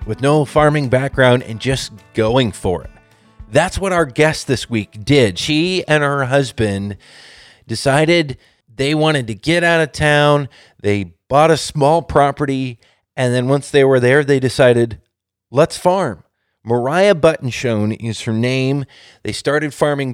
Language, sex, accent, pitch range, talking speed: English, male, American, 120-150 Hz, 150 wpm